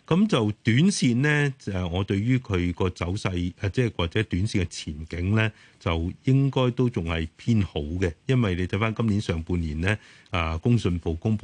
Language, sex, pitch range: Chinese, male, 90-110 Hz